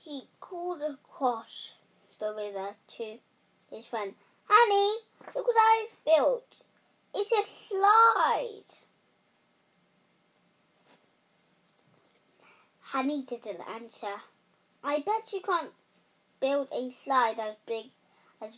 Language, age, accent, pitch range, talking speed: English, 10-29, British, 225-315 Hz, 95 wpm